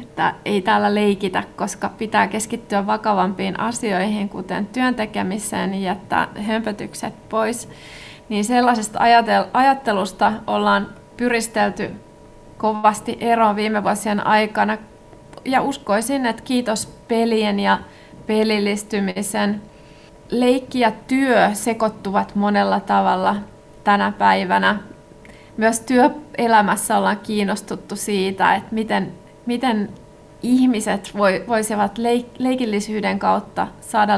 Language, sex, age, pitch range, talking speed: Finnish, female, 30-49, 205-230 Hz, 90 wpm